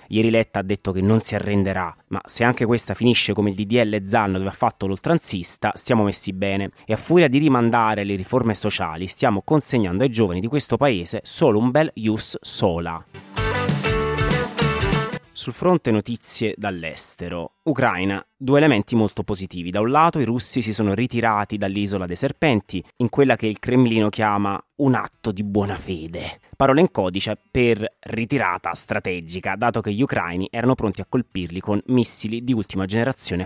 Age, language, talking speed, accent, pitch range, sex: 30-49, Italian, 170 wpm, native, 95-120 Hz, male